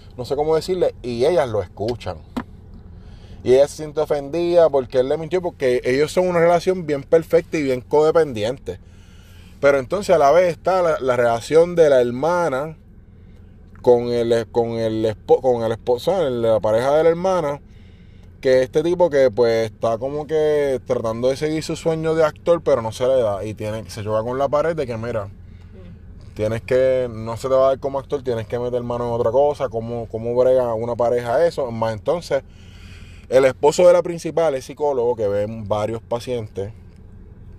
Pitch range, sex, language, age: 100-140 Hz, male, Spanish, 20-39